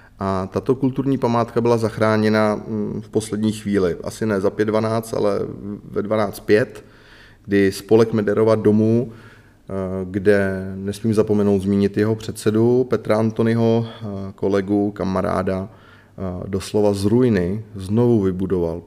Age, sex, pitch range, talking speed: 30-49, male, 95-110 Hz, 115 wpm